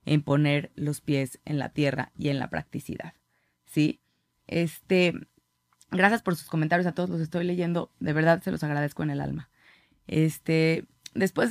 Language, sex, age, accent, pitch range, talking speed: Spanish, female, 30-49, Mexican, 145-185 Hz, 165 wpm